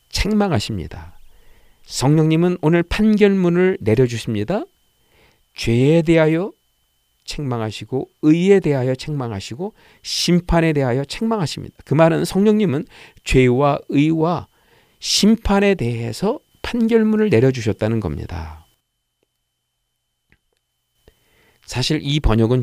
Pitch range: 100-165 Hz